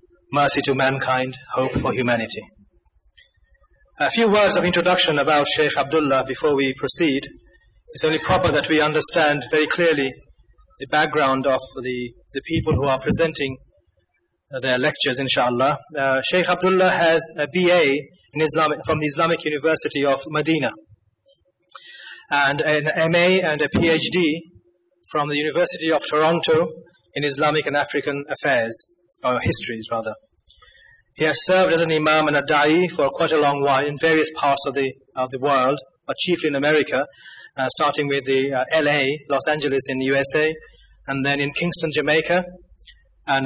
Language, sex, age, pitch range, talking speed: English, male, 30-49, 135-160 Hz, 155 wpm